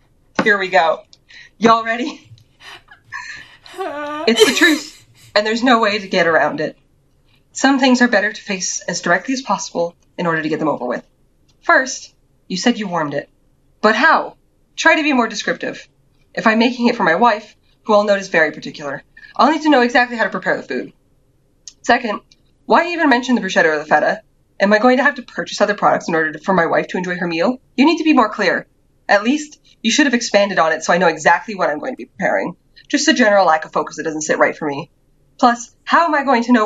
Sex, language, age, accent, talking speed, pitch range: female, English, 20-39, American, 230 wpm, 165-245 Hz